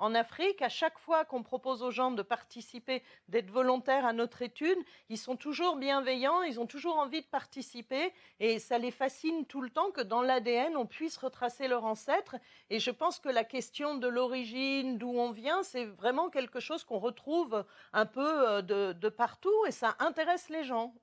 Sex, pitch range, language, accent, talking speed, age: female, 230-280 Hz, French, French, 195 wpm, 40-59